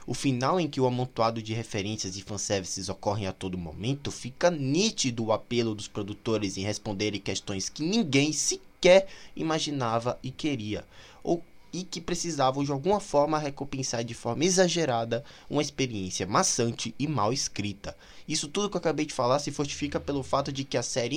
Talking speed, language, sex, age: 170 wpm, Portuguese, male, 20-39